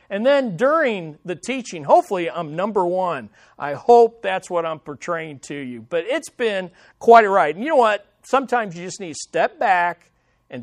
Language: English